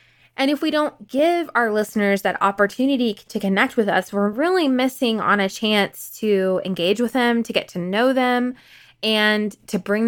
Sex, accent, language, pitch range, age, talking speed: female, American, English, 185-230 Hz, 20-39, 185 wpm